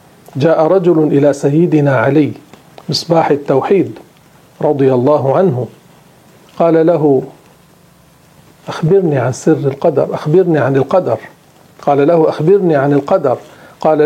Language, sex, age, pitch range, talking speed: Arabic, male, 50-69, 145-180 Hz, 105 wpm